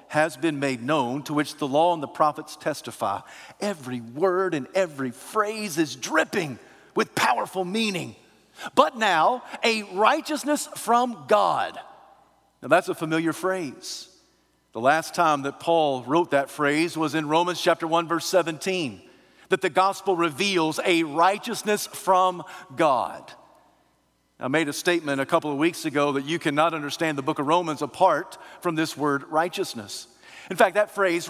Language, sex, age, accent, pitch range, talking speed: English, male, 50-69, American, 150-185 Hz, 155 wpm